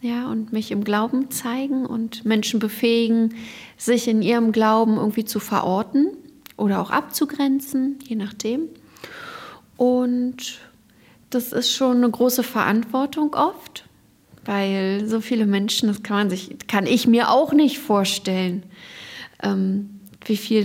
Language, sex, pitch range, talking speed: German, female, 210-250 Hz, 130 wpm